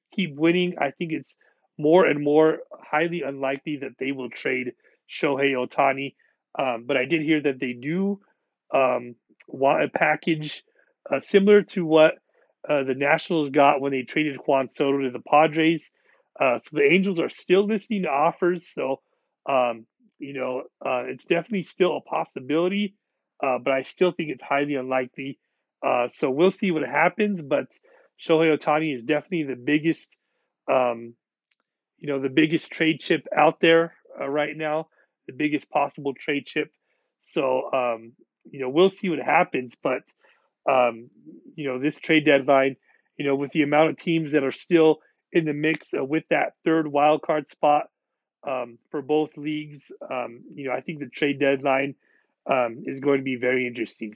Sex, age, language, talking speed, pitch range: male, 30-49, English, 170 wpm, 135-165 Hz